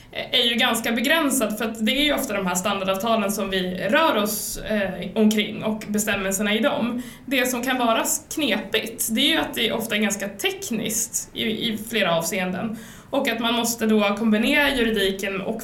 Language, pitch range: Swedish, 200-230 Hz